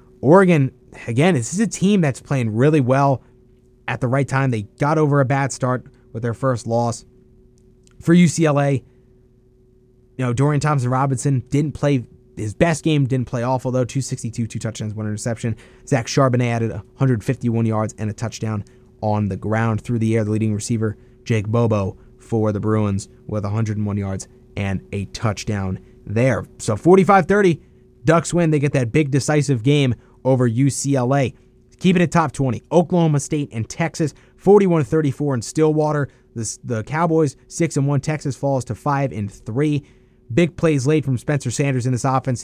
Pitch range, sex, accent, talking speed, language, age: 115-140 Hz, male, American, 165 wpm, English, 20-39